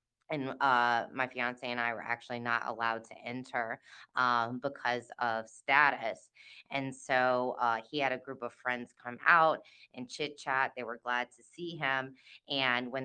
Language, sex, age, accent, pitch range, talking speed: English, female, 20-39, American, 125-140 Hz, 175 wpm